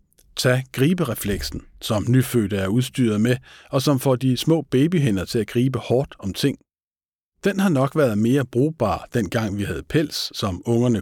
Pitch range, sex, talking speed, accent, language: 100-135 Hz, male, 165 wpm, native, Danish